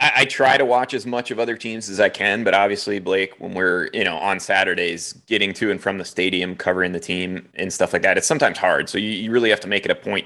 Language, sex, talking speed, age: English, male, 270 wpm, 30-49